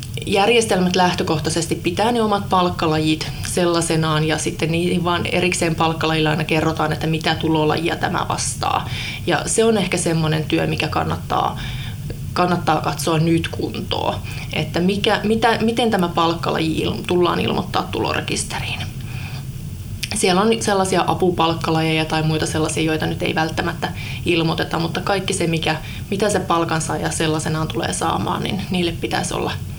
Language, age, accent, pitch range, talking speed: Finnish, 20-39, native, 155-175 Hz, 135 wpm